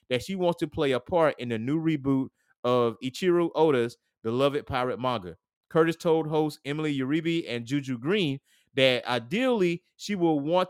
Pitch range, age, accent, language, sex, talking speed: 125-160 Hz, 30-49, American, English, male, 170 wpm